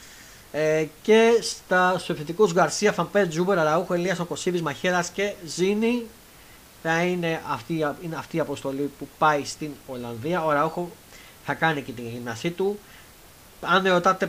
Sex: male